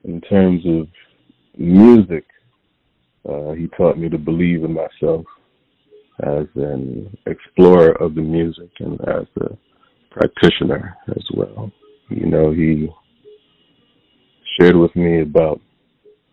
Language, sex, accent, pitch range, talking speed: English, male, American, 80-100 Hz, 115 wpm